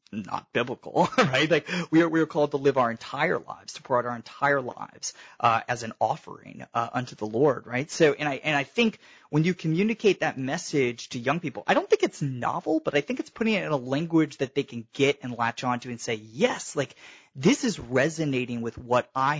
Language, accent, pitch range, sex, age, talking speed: English, American, 120-165 Hz, male, 30-49, 230 wpm